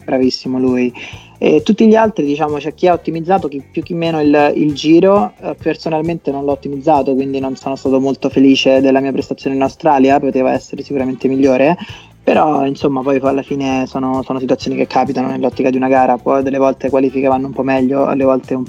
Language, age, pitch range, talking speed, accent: Italian, 20-39, 130-145 Hz, 205 wpm, native